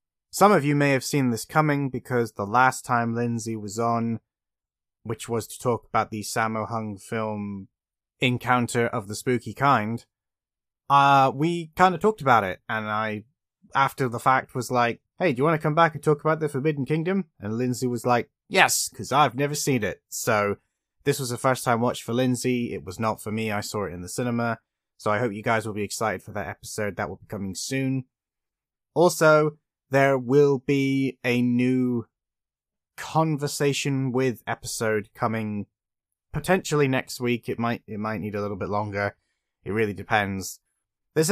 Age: 20-39